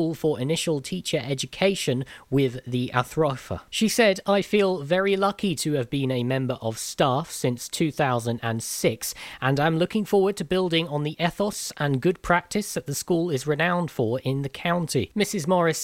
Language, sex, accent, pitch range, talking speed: English, male, British, 135-185 Hz, 170 wpm